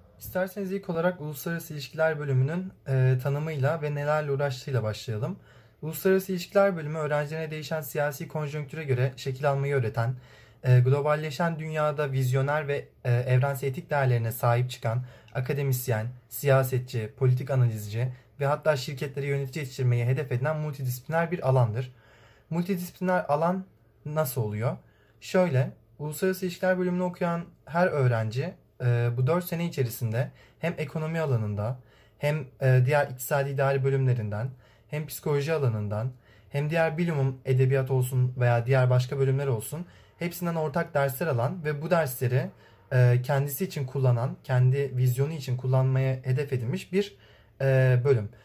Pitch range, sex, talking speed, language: 125-155 Hz, male, 125 wpm, Turkish